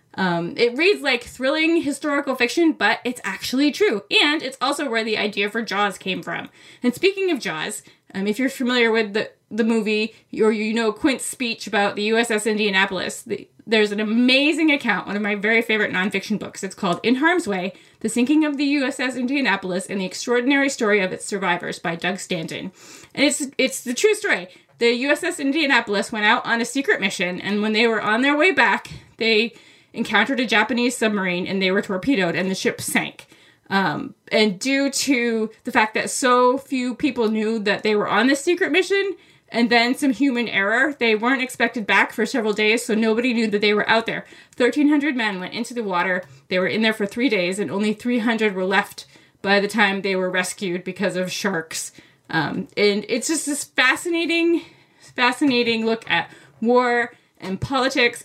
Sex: female